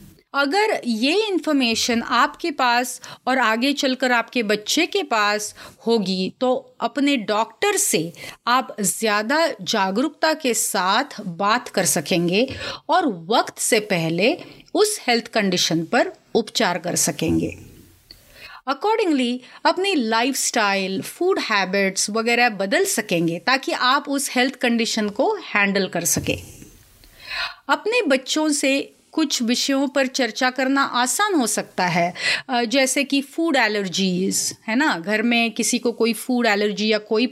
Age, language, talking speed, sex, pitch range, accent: 30-49, Hindi, 130 wpm, female, 210-285 Hz, native